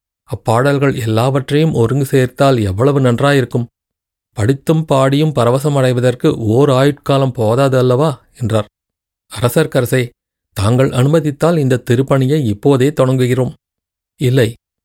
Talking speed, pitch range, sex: 90 wpm, 115-135 Hz, male